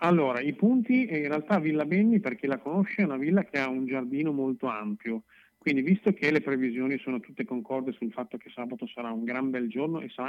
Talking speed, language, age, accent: 225 wpm, Italian, 40-59, native